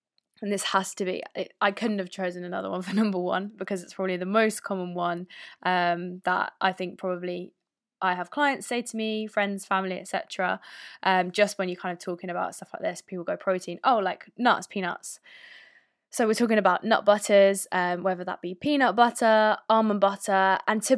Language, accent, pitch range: English, British, 190-230 Hz